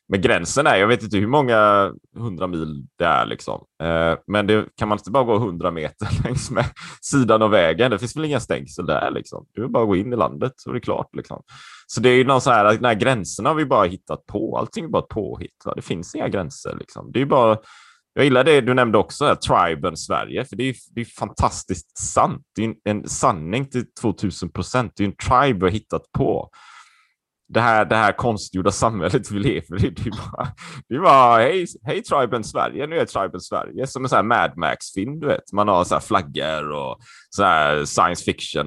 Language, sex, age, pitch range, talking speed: Swedish, male, 30-49, 90-120 Hz, 220 wpm